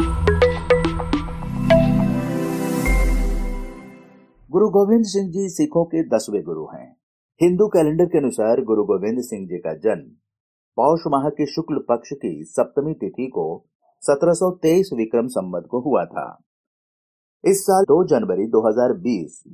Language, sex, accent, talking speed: Hindi, male, native, 120 wpm